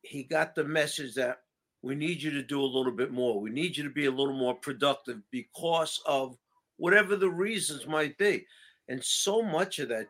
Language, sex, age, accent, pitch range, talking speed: English, male, 50-69, American, 130-170 Hz, 210 wpm